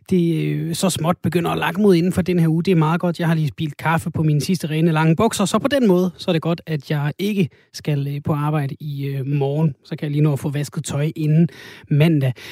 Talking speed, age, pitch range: 265 wpm, 30-49, 145-180 Hz